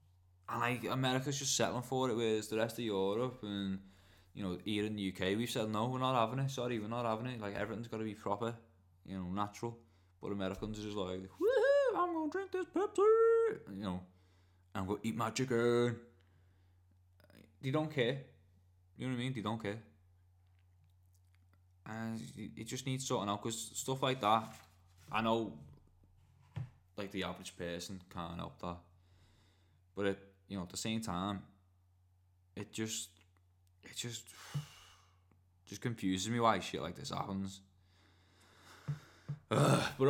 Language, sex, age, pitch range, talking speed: English, male, 20-39, 90-120 Hz, 170 wpm